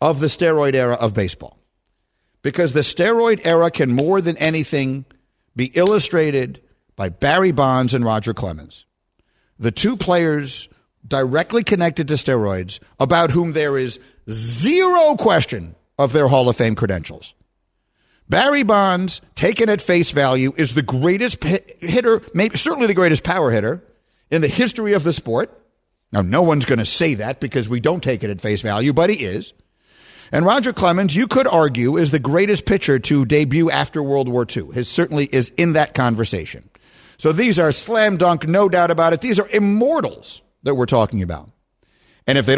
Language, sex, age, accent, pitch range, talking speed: English, male, 50-69, American, 120-175 Hz, 170 wpm